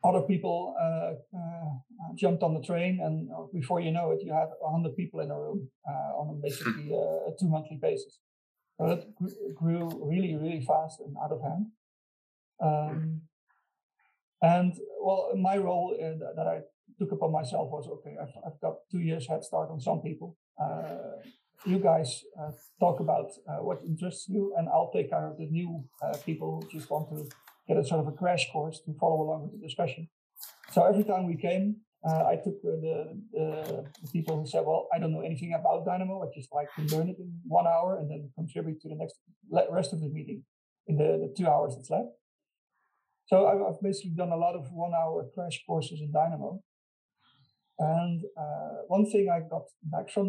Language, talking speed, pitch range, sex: English, 200 wpm, 155-185 Hz, male